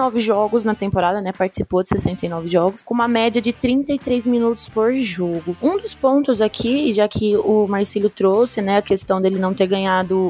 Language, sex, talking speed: Portuguese, female, 185 wpm